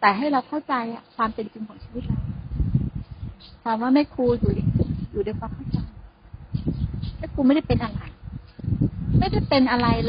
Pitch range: 230-285 Hz